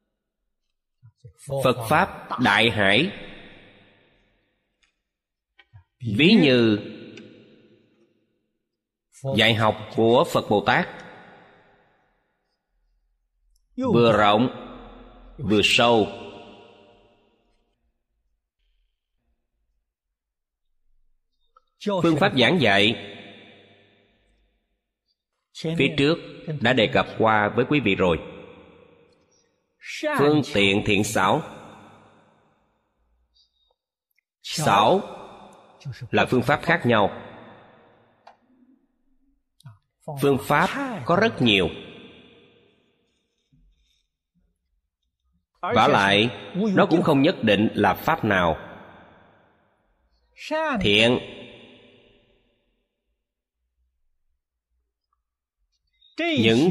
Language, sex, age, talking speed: Vietnamese, male, 30-49, 60 wpm